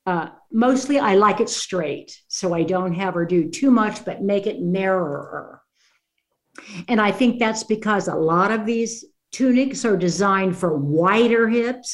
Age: 60-79